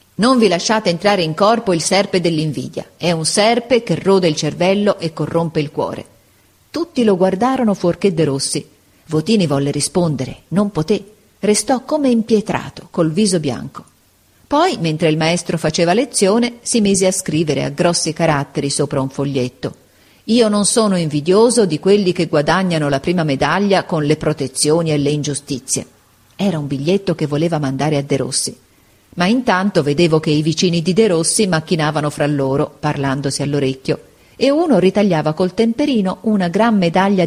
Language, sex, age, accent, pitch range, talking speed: Italian, female, 40-59, native, 150-200 Hz, 160 wpm